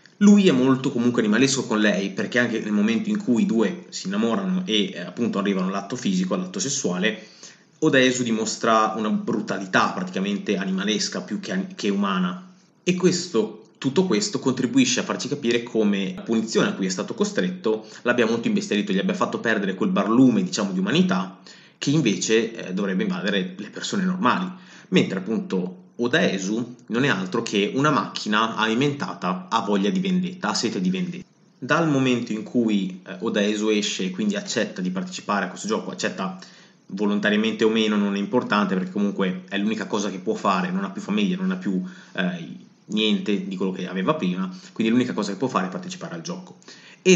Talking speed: 180 wpm